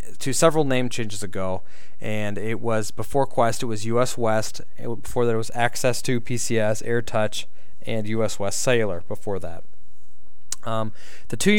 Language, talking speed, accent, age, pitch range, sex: English, 160 wpm, American, 20-39, 105-135 Hz, male